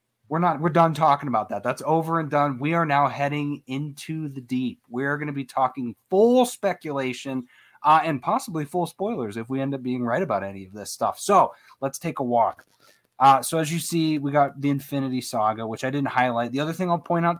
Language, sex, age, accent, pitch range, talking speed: English, male, 30-49, American, 115-155 Hz, 225 wpm